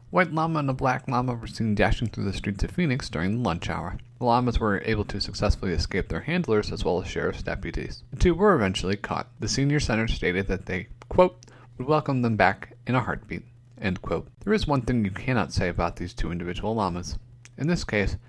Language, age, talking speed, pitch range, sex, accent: English, 30-49, 225 wpm, 90-130 Hz, male, American